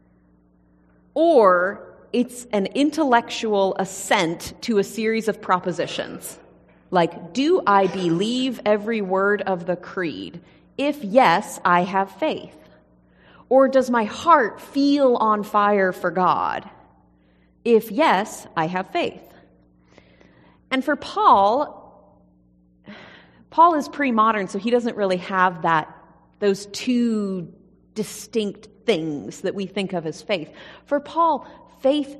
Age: 30-49